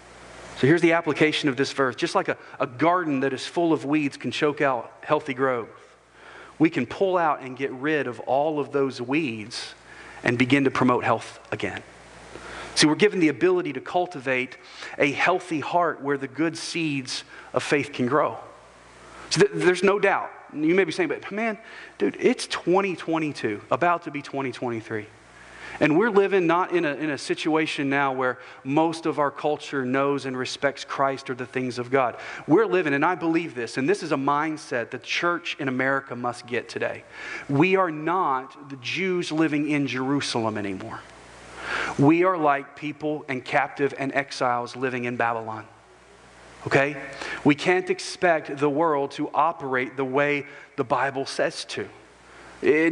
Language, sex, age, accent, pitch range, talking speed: English, male, 40-59, American, 130-165 Hz, 170 wpm